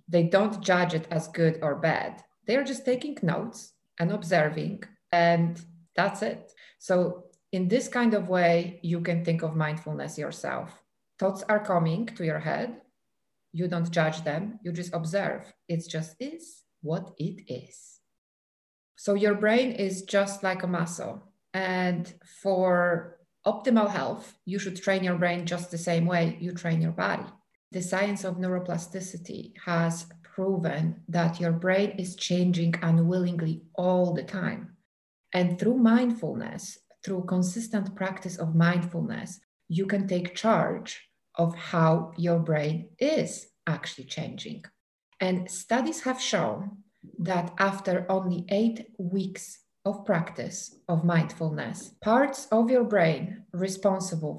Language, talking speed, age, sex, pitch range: English, 140 wpm, 30-49, female, 170-200 Hz